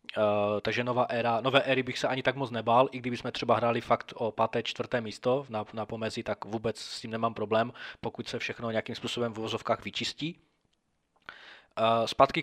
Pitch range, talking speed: 115-140 Hz, 195 wpm